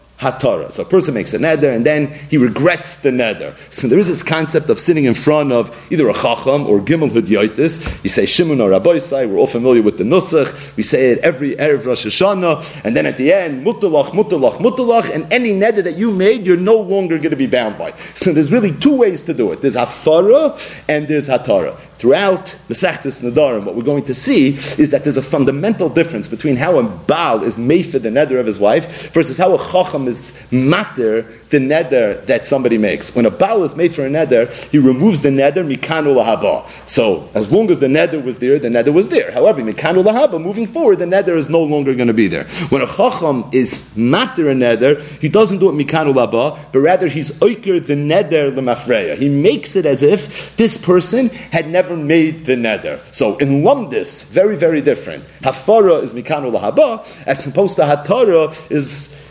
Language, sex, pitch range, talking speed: English, male, 135-185 Hz, 205 wpm